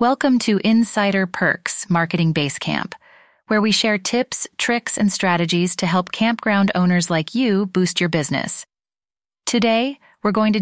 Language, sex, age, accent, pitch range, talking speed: English, female, 30-49, American, 170-215 Hz, 145 wpm